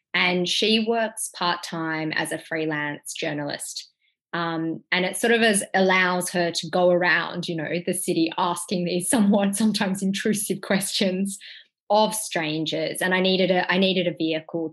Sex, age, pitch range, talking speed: female, 20-39, 160-195 Hz, 145 wpm